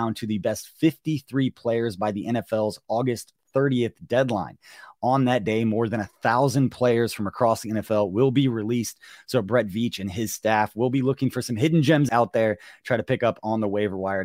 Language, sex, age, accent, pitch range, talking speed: English, male, 30-49, American, 110-145 Hz, 205 wpm